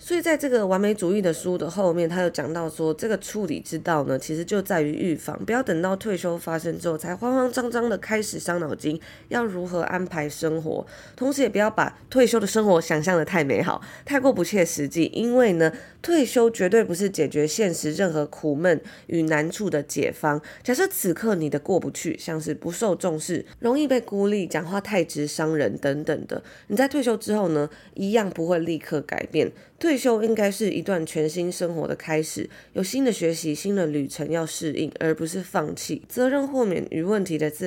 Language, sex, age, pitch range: Chinese, female, 20-39, 160-220 Hz